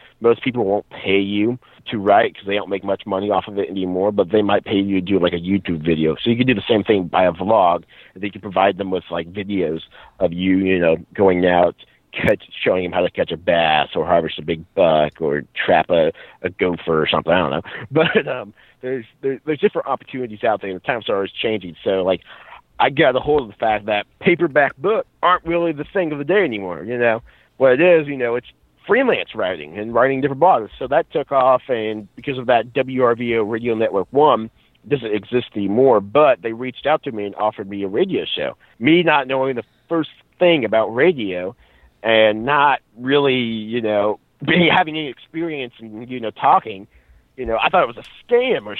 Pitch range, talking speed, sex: 100-140 Hz, 220 wpm, male